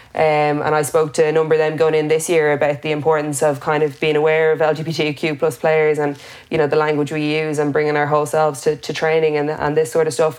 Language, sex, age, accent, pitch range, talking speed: English, female, 20-39, Irish, 150-160 Hz, 265 wpm